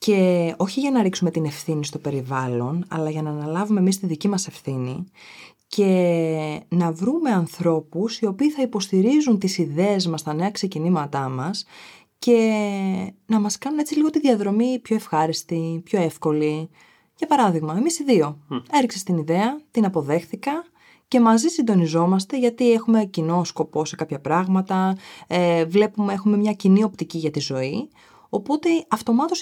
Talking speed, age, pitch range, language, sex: 155 wpm, 20-39, 165-225 Hz, Greek, female